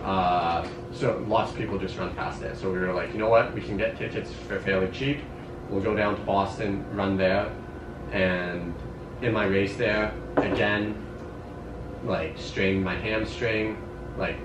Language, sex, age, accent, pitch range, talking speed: English, male, 30-49, American, 90-105 Hz, 170 wpm